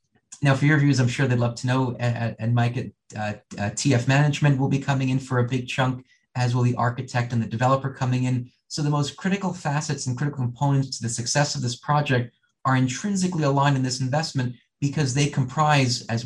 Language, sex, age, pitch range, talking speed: English, male, 30-49, 120-135 Hz, 210 wpm